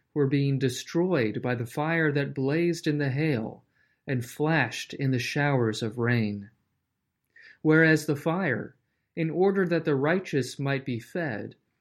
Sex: male